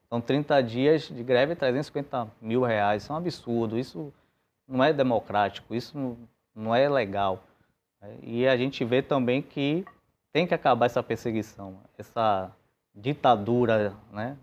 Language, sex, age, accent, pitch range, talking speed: Portuguese, male, 20-39, Brazilian, 115-140 Hz, 145 wpm